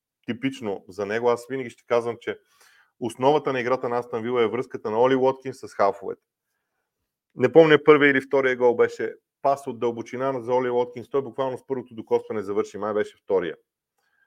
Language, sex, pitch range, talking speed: Bulgarian, male, 115-150 Hz, 180 wpm